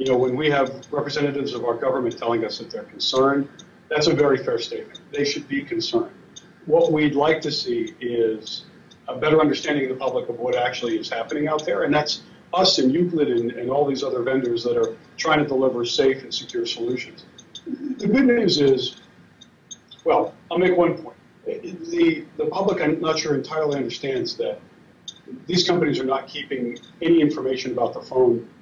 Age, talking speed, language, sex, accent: 50-69, 190 wpm, English, male, American